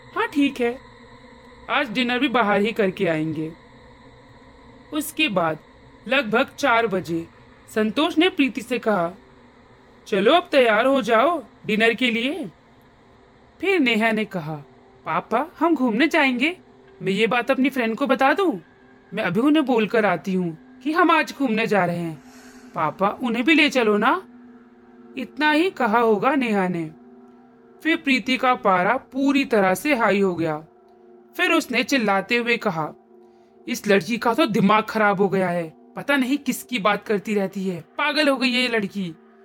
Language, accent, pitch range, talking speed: Hindi, native, 185-280 Hz, 160 wpm